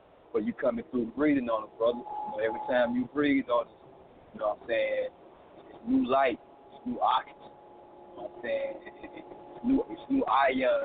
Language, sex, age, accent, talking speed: English, male, 30-49, American, 240 wpm